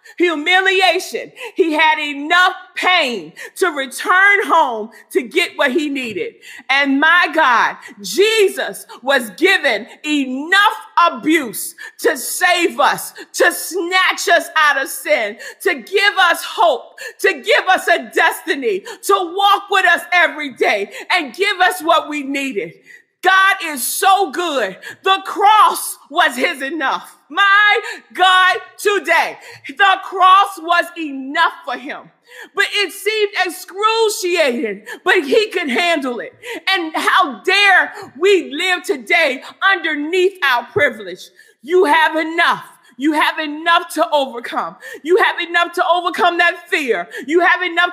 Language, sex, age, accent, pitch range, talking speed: English, female, 40-59, American, 330-390 Hz, 130 wpm